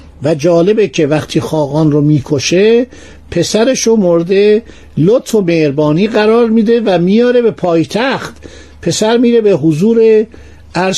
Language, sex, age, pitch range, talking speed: Persian, male, 60-79, 145-210 Hz, 160 wpm